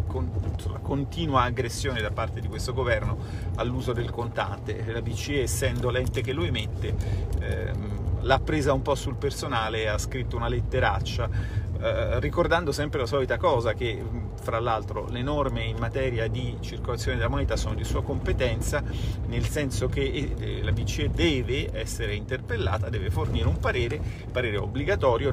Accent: native